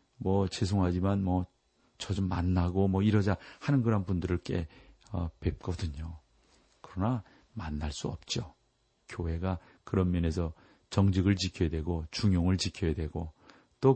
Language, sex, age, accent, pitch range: Korean, male, 40-59, native, 90-115 Hz